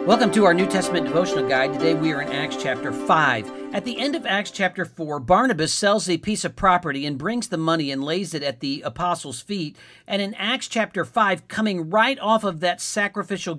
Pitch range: 145-195 Hz